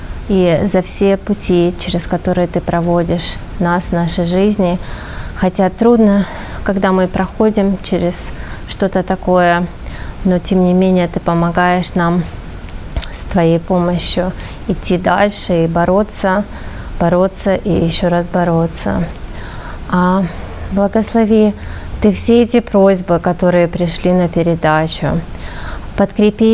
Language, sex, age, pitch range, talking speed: Russian, female, 20-39, 170-195 Hz, 110 wpm